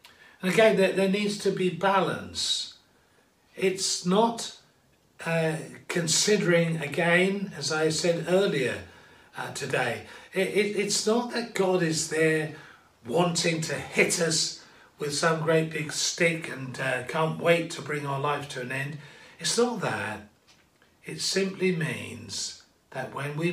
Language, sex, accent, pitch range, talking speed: English, male, British, 130-175 Hz, 135 wpm